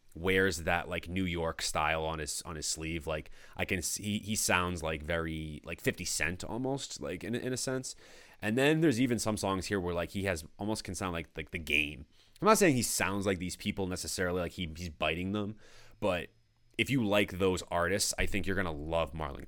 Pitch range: 85-105 Hz